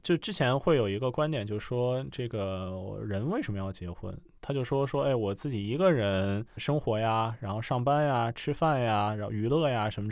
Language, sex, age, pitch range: Chinese, male, 20-39, 100-145 Hz